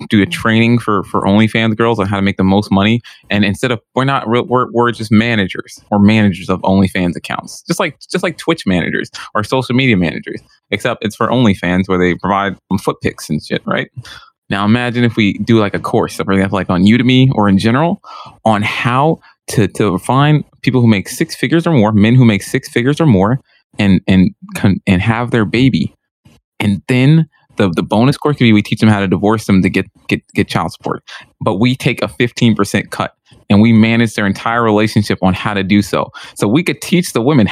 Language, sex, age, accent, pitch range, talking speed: English, male, 20-39, American, 100-130 Hz, 215 wpm